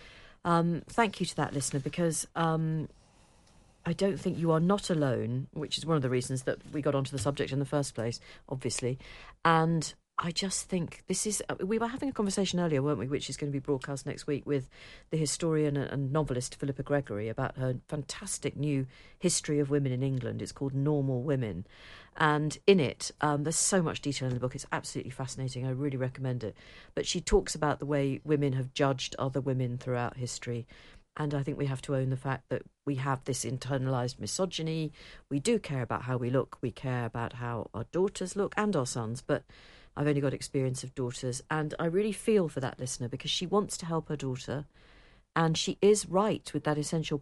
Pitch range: 130-160 Hz